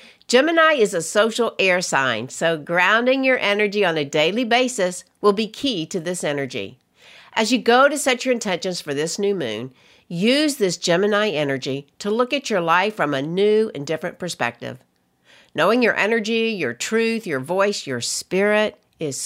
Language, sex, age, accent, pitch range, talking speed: English, female, 60-79, American, 160-220 Hz, 175 wpm